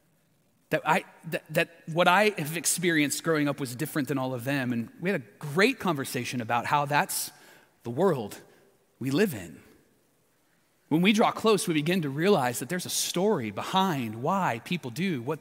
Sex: male